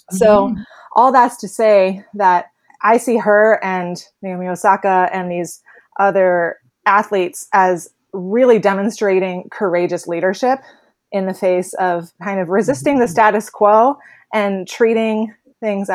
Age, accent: 20-39, American